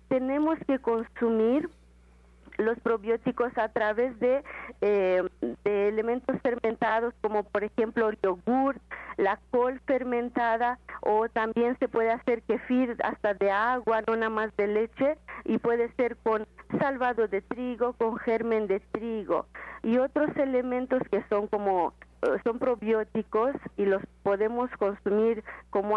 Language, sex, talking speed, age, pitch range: Spanish, female, 130 wpm, 40-59, 215-255 Hz